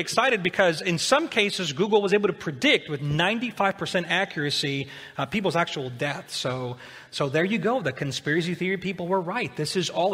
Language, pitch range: English, 155-215 Hz